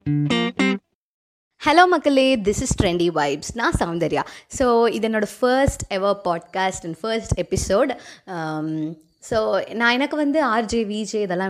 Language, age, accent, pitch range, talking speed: Tamil, 20-39, native, 185-255 Hz, 145 wpm